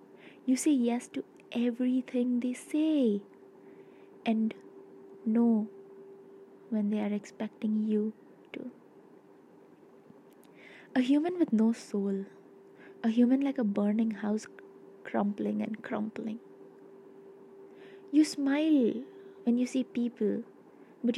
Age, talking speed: 20-39, 100 wpm